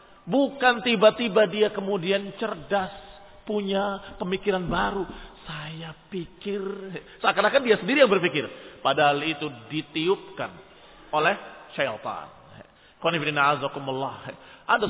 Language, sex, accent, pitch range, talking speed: Indonesian, male, native, 145-240 Hz, 85 wpm